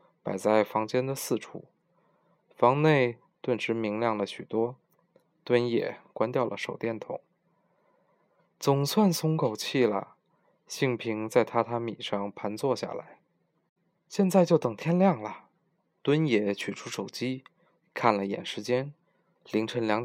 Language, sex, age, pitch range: Chinese, male, 20-39, 115-170 Hz